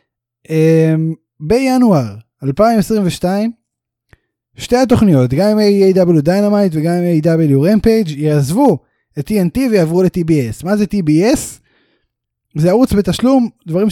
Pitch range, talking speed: 145-215 Hz, 105 wpm